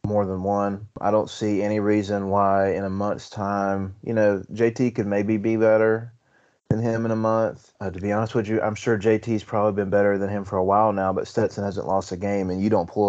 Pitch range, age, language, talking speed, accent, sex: 95-110 Hz, 30-49, English, 245 wpm, American, male